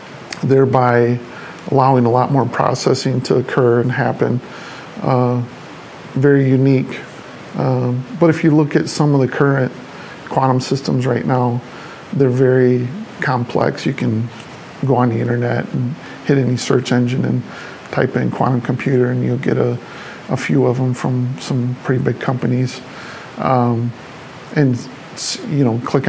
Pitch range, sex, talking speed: 125-135 Hz, male, 145 wpm